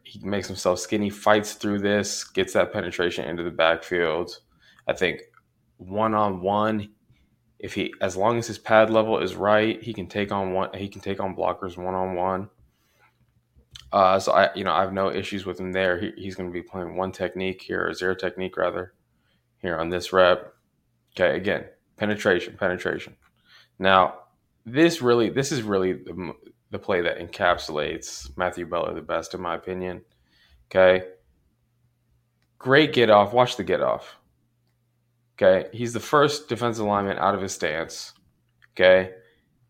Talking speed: 165 wpm